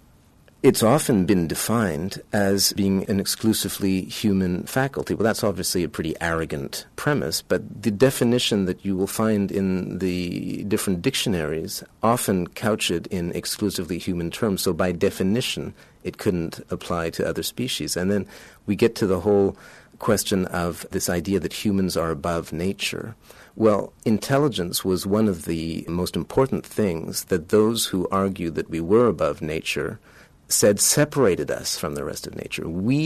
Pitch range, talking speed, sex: 90-110 Hz, 160 wpm, male